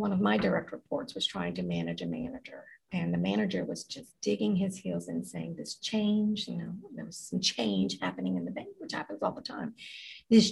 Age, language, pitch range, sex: 50-69, English, 180-235 Hz, female